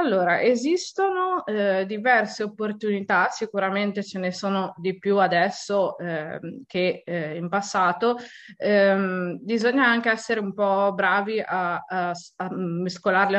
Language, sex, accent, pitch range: Italian, female, native, 180-205 Hz